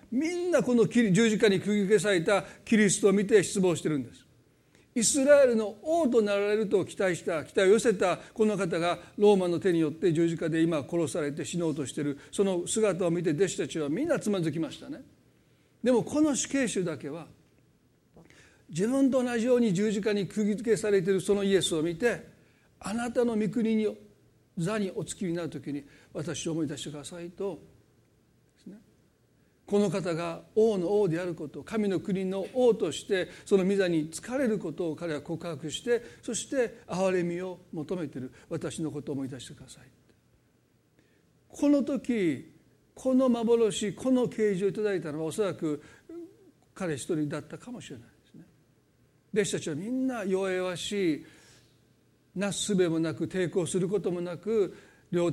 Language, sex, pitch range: Japanese, male, 160-220 Hz